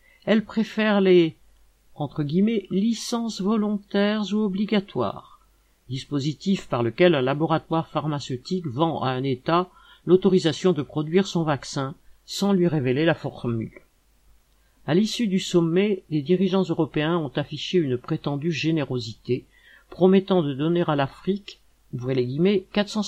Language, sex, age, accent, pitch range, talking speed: French, male, 50-69, French, 140-190 Hz, 130 wpm